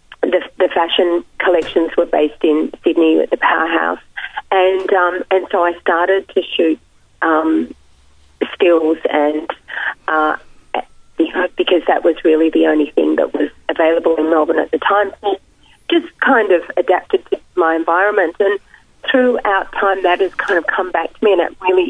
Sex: female